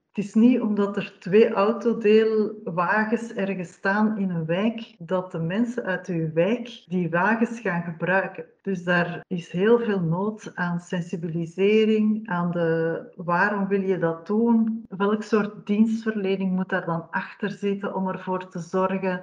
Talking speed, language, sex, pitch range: 155 wpm, Dutch, female, 180-210 Hz